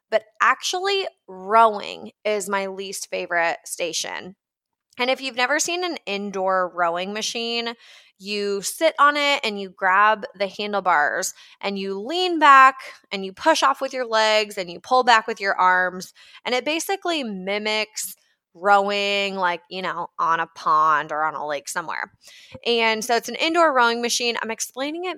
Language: English